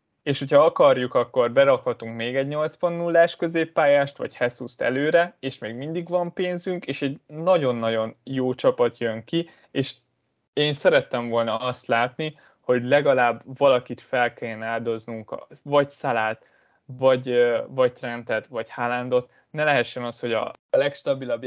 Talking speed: 140 wpm